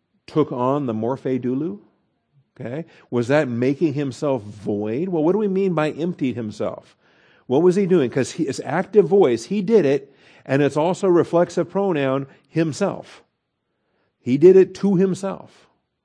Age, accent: 50-69, American